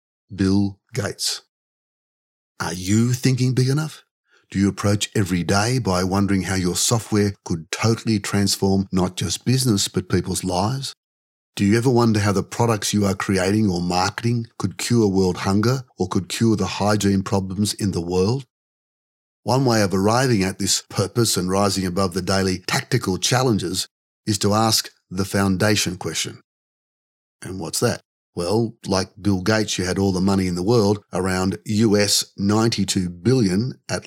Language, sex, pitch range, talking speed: English, male, 95-110 Hz, 160 wpm